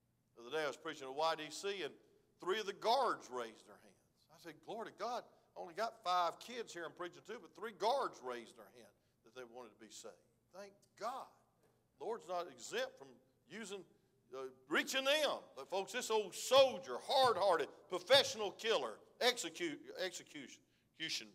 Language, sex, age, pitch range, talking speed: English, male, 50-69, 115-170 Hz, 180 wpm